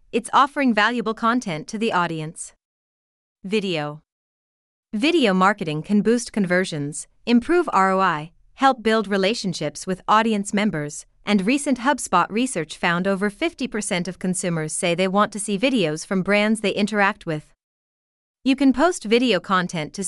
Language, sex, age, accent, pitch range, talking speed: English, female, 30-49, American, 180-240 Hz, 140 wpm